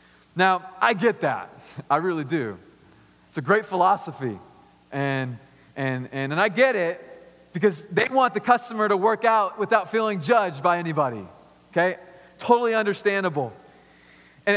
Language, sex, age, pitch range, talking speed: English, male, 30-49, 140-205 Hz, 145 wpm